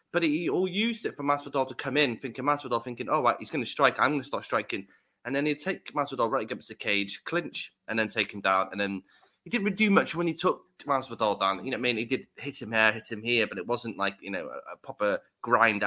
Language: English